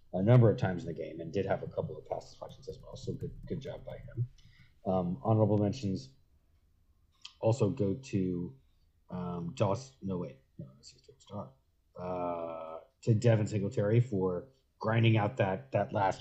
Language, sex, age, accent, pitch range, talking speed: English, male, 30-49, American, 90-120 Hz, 160 wpm